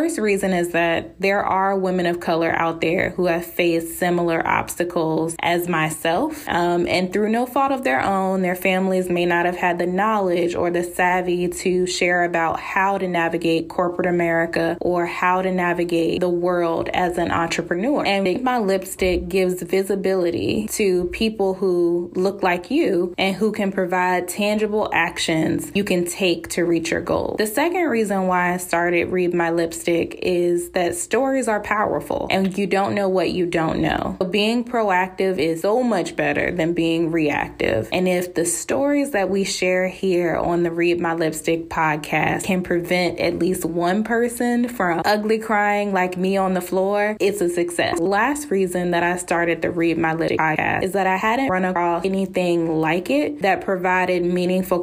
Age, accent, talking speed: 20-39, American, 180 wpm